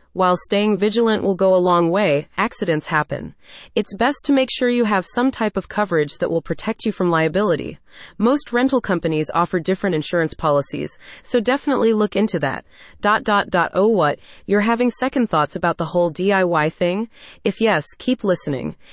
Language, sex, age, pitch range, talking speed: English, female, 30-49, 170-230 Hz, 180 wpm